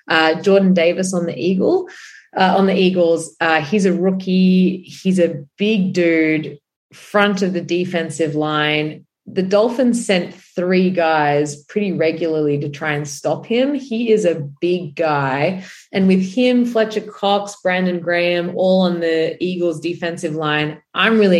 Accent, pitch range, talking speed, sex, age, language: Australian, 160-200 Hz, 155 wpm, female, 20-39, English